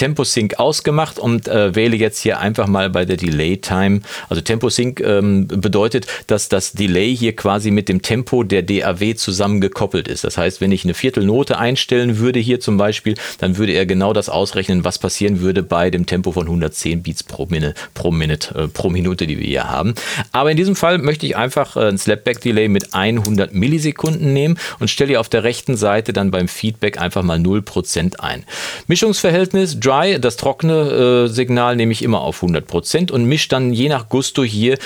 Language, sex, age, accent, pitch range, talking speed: German, male, 40-59, German, 95-145 Hz, 190 wpm